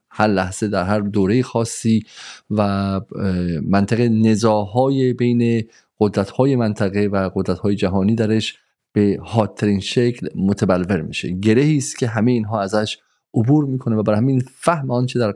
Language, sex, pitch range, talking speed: Persian, male, 100-125 Hz, 135 wpm